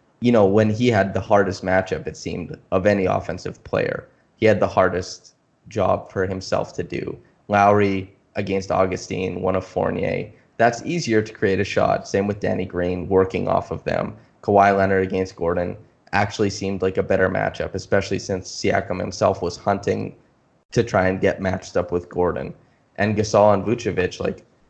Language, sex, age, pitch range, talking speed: English, male, 20-39, 95-110 Hz, 175 wpm